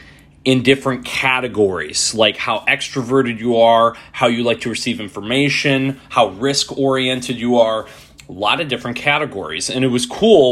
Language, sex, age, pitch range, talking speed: English, male, 30-49, 115-135 Hz, 155 wpm